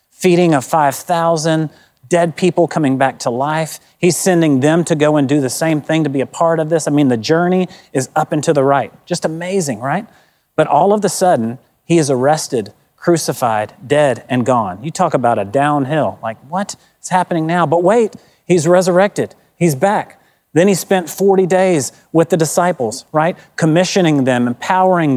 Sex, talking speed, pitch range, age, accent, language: male, 185 wpm, 155-190 Hz, 40-59, American, English